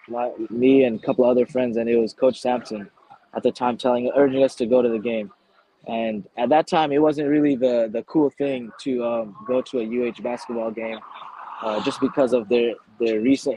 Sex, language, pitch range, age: male, English, 115-135 Hz, 20-39